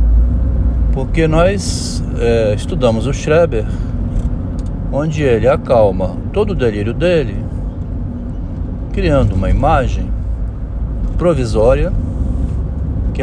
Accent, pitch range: Brazilian, 75-100 Hz